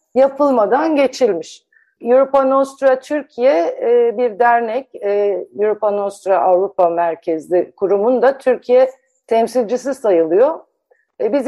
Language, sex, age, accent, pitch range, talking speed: Turkish, female, 50-69, native, 195-270 Hz, 90 wpm